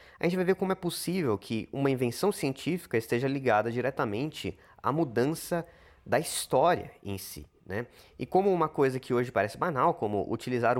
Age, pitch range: 20-39, 115-160 Hz